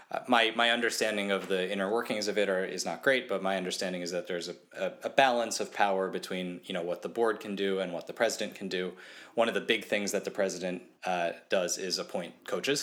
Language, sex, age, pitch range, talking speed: English, male, 20-39, 90-100 Hz, 250 wpm